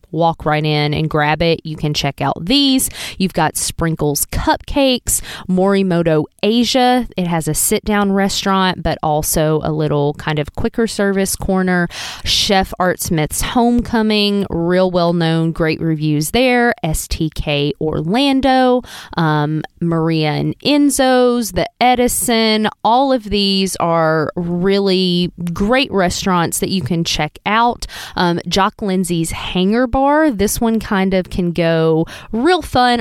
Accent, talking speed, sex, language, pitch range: American, 135 wpm, female, English, 160-215 Hz